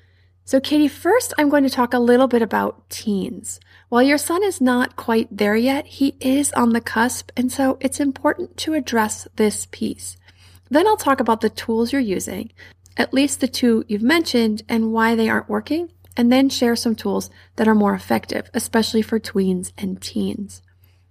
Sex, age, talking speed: female, 30-49, 190 wpm